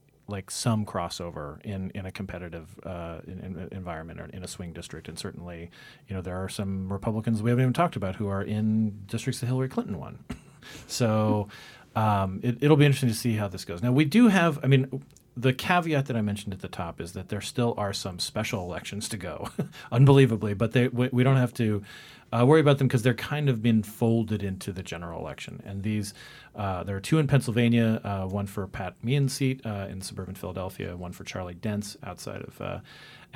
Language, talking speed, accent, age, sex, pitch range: English, 215 wpm, American, 40-59, male, 95-125 Hz